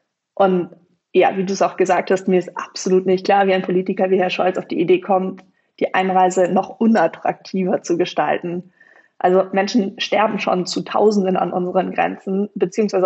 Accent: German